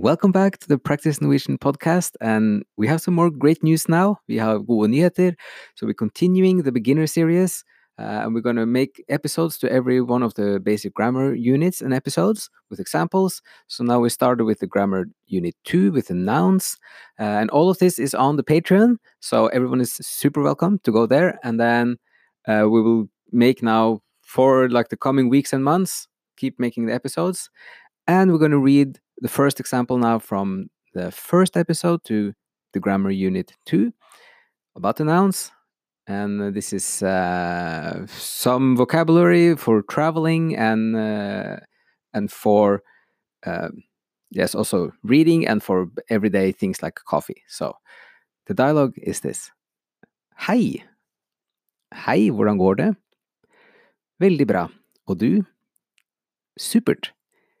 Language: English